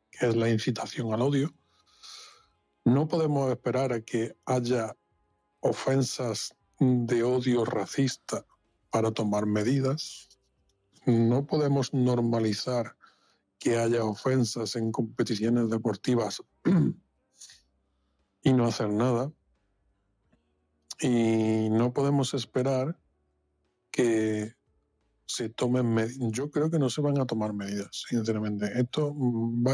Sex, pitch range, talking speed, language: male, 110-130 Hz, 105 wpm, Spanish